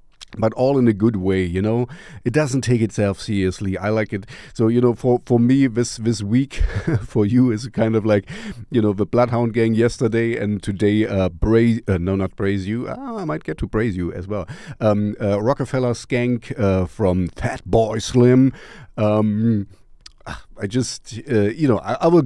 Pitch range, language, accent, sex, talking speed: 100-125 Hz, English, German, male, 195 wpm